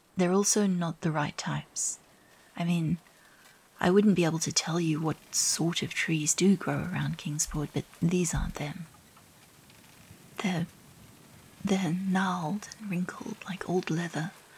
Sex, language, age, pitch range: female, English, 30-49, 160-185 Hz